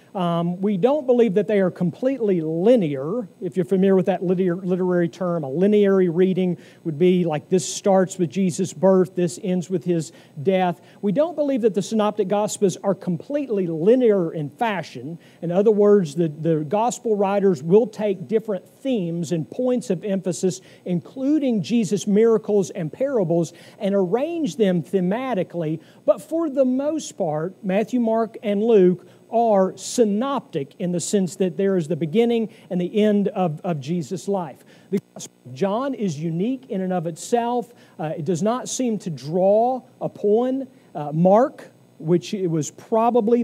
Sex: male